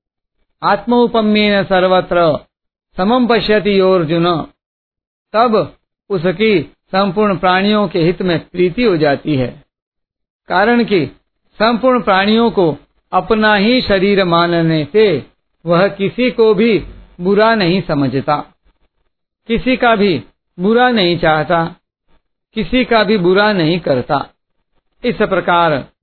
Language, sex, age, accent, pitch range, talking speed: Hindi, male, 50-69, native, 165-215 Hz, 105 wpm